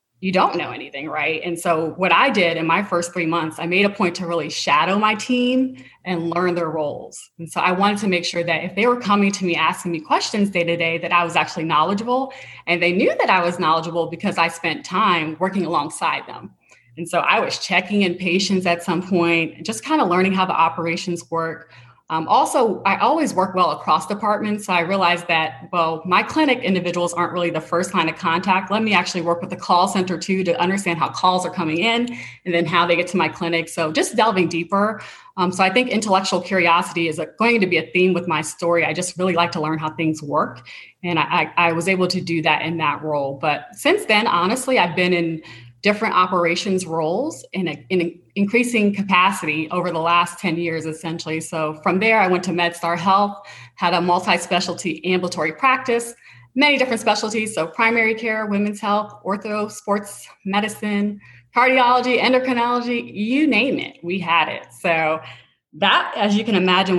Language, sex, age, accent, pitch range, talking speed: English, female, 20-39, American, 165-200 Hz, 205 wpm